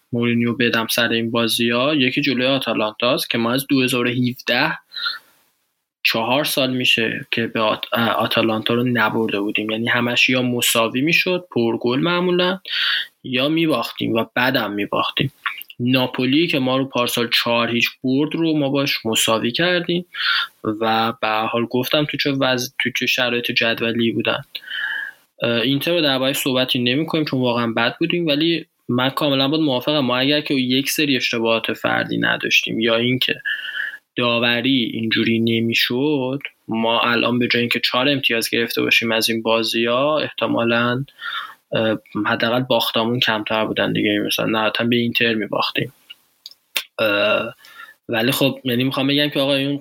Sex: male